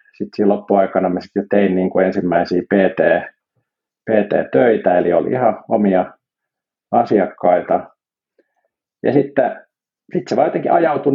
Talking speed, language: 85 wpm, Finnish